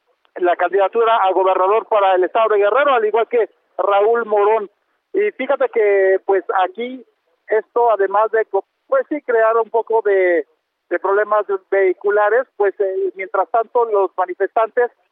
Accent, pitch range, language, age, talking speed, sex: Mexican, 195-230 Hz, Spanish, 50-69, 145 wpm, male